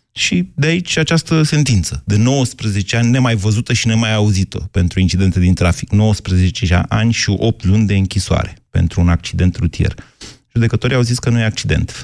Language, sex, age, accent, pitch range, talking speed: Romanian, male, 30-49, native, 100-130 Hz, 175 wpm